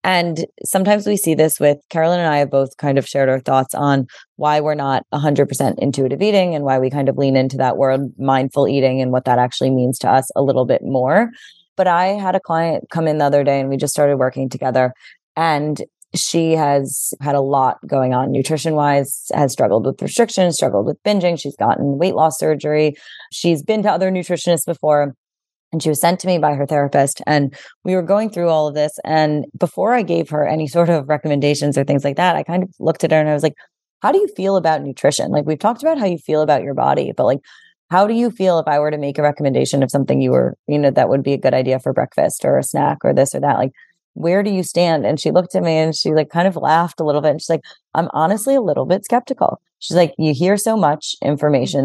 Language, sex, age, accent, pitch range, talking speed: English, female, 20-39, American, 140-175 Hz, 250 wpm